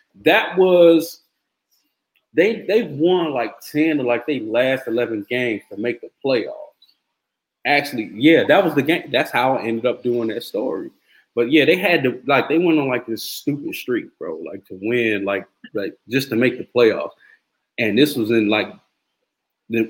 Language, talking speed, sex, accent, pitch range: English, 190 wpm, male, American, 110-150 Hz